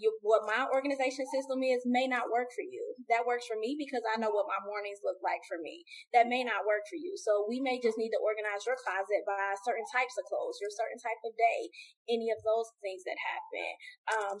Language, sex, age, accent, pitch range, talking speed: English, female, 10-29, American, 215-275 Hz, 240 wpm